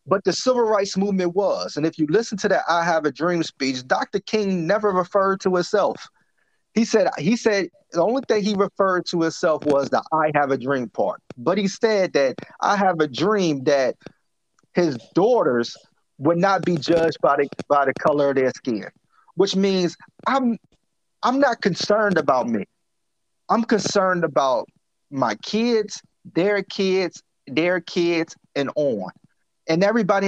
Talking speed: 170 wpm